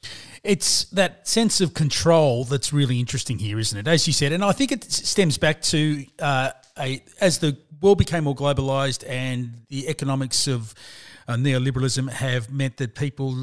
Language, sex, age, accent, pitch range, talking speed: English, male, 40-59, Australian, 130-165 Hz, 165 wpm